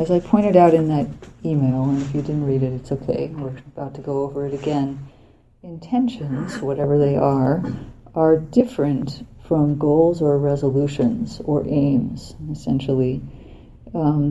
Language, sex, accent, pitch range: English, female, American, 135-160 Hz